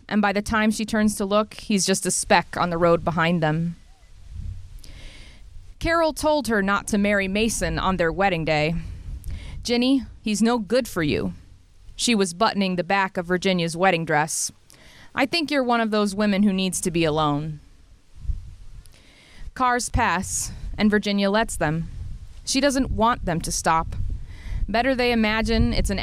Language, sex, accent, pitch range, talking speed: English, female, American, 160-220 Hz, 165 wpm